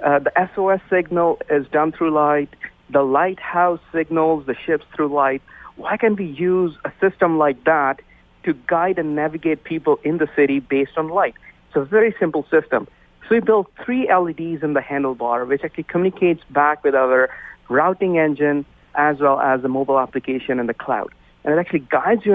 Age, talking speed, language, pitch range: 50-69, 185 wpm, English, 135-175 Hz